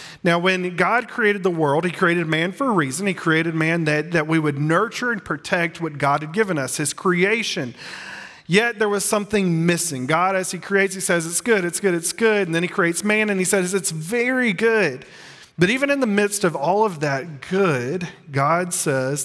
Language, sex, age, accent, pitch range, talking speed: English, male, 40-59, American, 145-190 Hz, 215 wpm